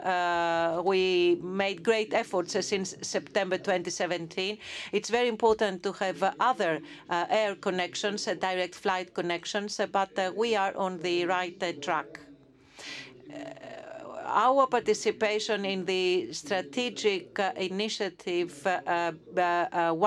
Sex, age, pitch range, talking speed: female, 40-59, 175-210 Hz, 130 wpm